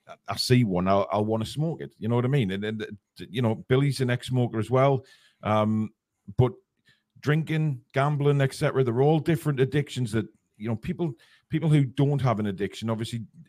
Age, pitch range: 40-59, 115-155 Hz